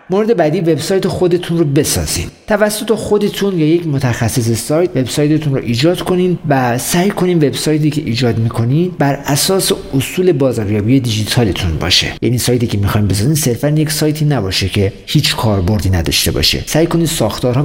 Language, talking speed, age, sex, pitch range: Persian, 155 wpm, 50-69, male, 120-165 Hz